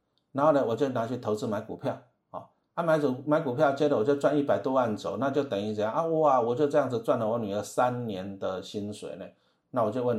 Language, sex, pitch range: Chinese, male, 115-155 Hz